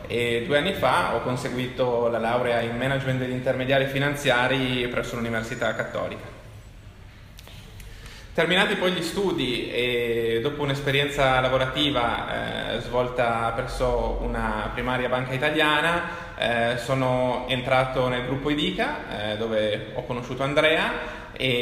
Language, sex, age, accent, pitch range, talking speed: Italian, male, 20-39, native, 120-140 Hz, 115 wpm